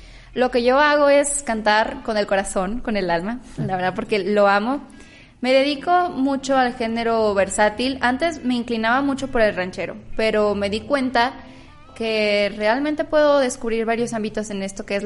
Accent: Mexican